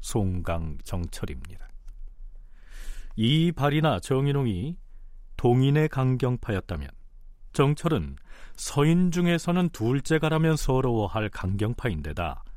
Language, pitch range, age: Korean, 95-145 Hz, 40-59